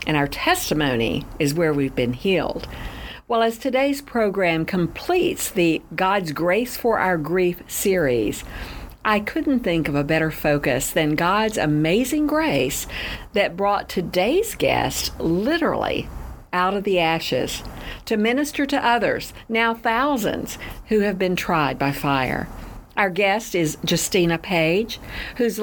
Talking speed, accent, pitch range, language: 135 wpm, American, 150-215 Hz, English